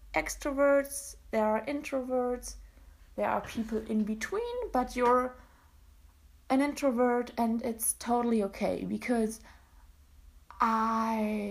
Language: English